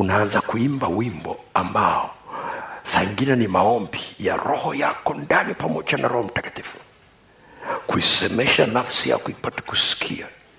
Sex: male